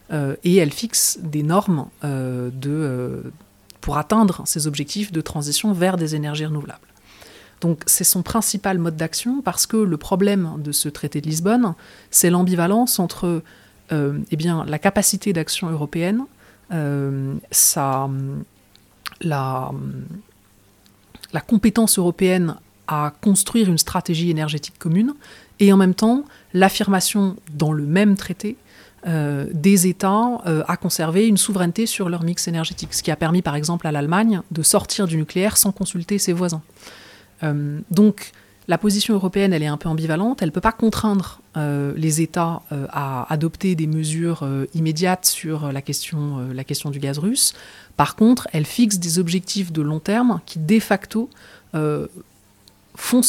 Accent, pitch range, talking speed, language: French, 150-195 Hz, 155 wpm, French